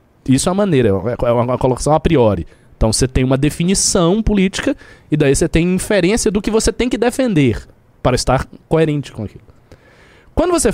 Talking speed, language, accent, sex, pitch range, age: 200 wpm, Portuguese, Brazilian, male, 125-195 Hz, 20-39